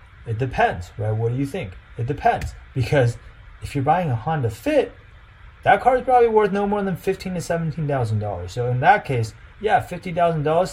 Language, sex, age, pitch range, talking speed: English, male, 30-49, 125-180 Hz, 185 wpm